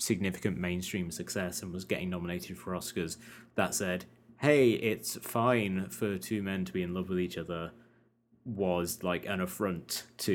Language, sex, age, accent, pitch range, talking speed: English, male, 20-39, British, 85-115 Hz, 170 wpm